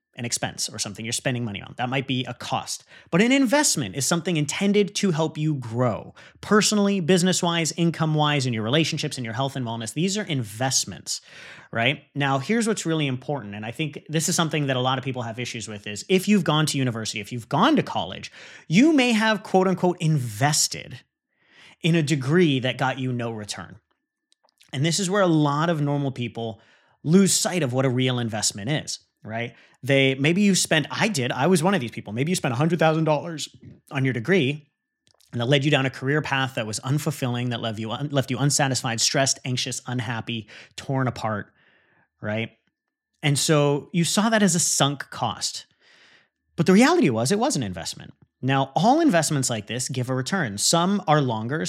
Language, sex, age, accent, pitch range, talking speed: English, male, 30-49, American, 125-170 Hz, 195 wpm